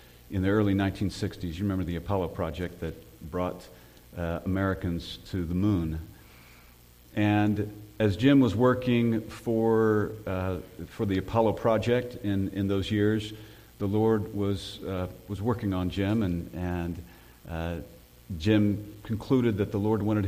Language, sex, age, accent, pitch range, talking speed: English, male, 50-69, American, 90-110 Hz, 140 wpm